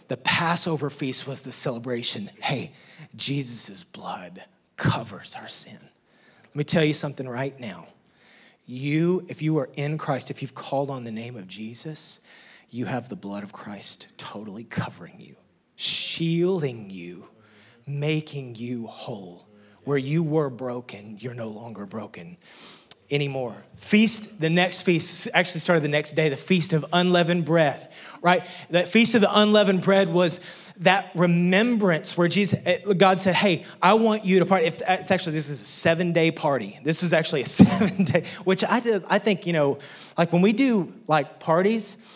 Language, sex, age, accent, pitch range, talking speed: English, male, 30-49, American, 140-185 Hz, 160 wpm